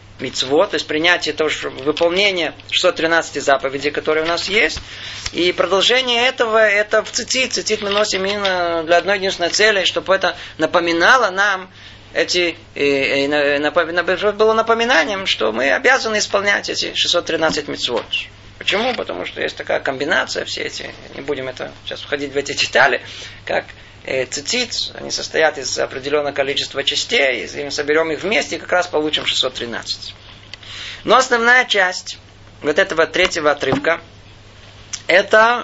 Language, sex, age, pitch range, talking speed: Russian, male, 20-39, 130-195 Hz, 140 wpm